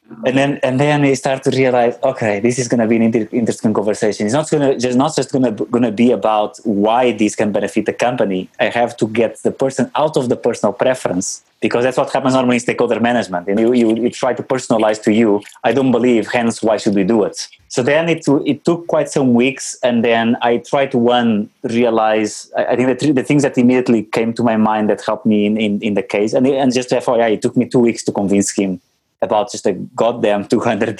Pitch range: 110-130 Hz